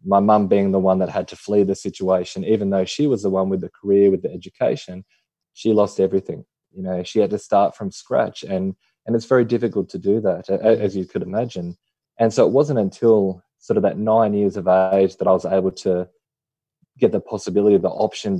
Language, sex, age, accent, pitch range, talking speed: English, male, 20-39, Australian, 95-115 Hz, 220 wpm